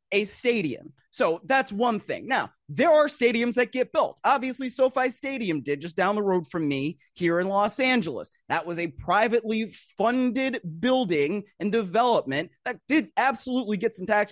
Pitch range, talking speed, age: 175-250 Hz, 170 wpm, 30-49